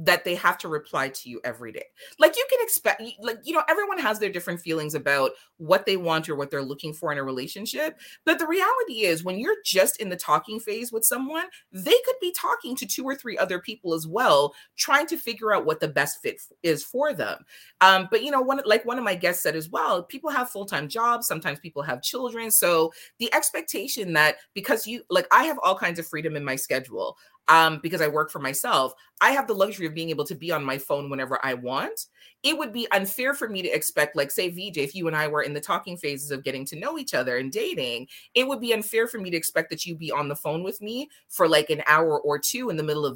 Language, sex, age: English, female, 30-49